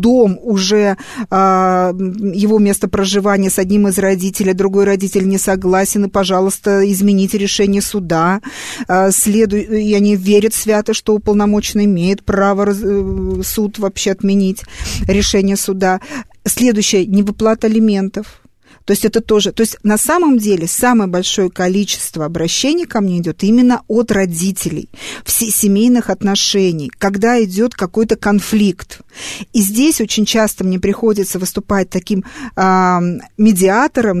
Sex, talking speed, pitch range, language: female, 120 wpm, 190-220 Hz, Russian